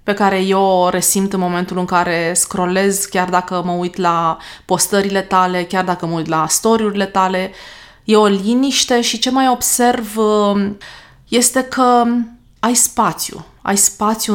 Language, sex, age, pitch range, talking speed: Romanian, female, 20-39, 185-225 Hz, 155 wpm